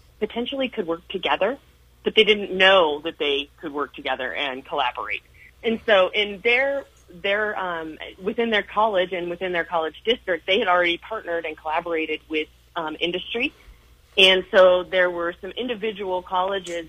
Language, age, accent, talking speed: English, 30-49, American, 160 wpm